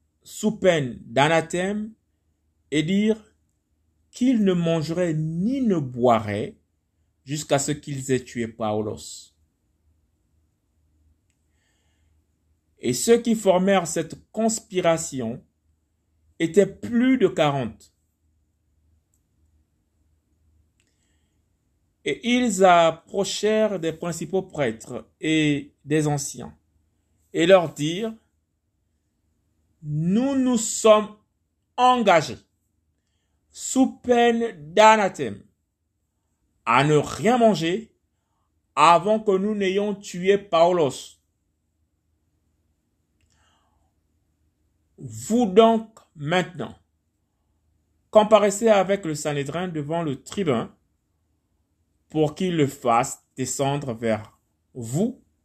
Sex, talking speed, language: male, 80 wpm, French